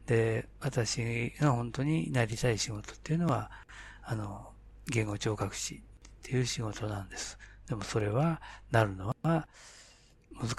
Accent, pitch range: native, 100-140 Hz